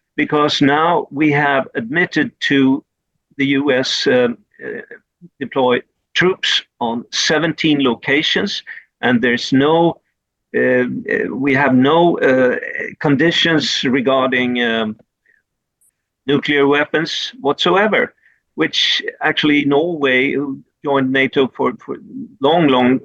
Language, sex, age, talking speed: English, male, 50-69, 100 wpm